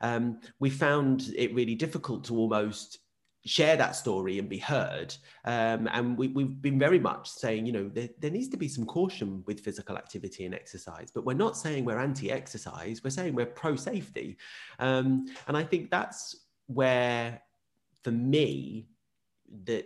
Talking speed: 160 wpm